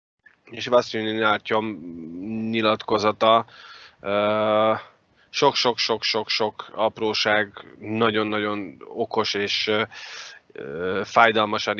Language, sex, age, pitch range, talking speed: Hungarian, male, 30-49, 105-115 Hz, 55 wpm